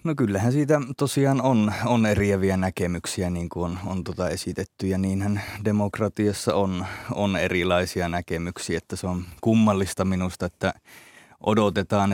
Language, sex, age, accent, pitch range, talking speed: Finnish, male, 30-49, native, 90-100 Hz, 140 wpm